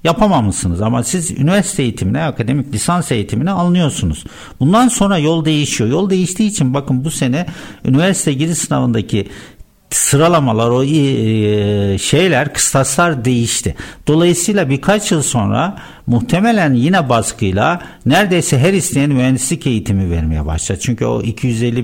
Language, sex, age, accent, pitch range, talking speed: Turkish, male, 60-79, native, 110-165 Hz, 120 wpm